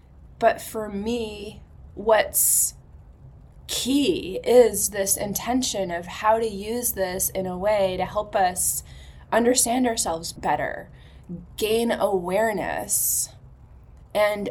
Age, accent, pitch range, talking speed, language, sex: 20-39, American, 185-225 Hz, 105 wpm, English, female